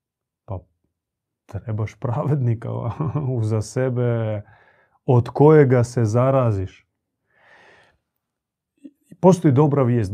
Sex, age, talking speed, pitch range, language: male, 30-49, 65 wpm, 110-145 Hz, Croatian